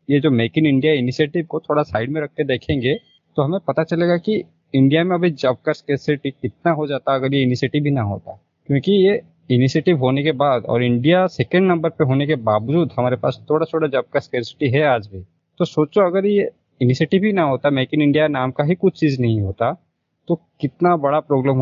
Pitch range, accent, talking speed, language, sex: 125-165 Hz, native, 220 wpm, Hindi, male